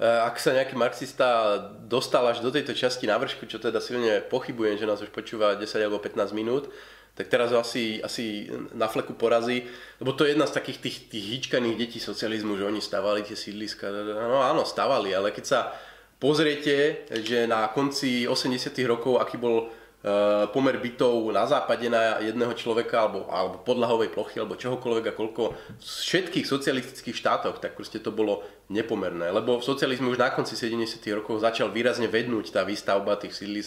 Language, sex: Slovak, male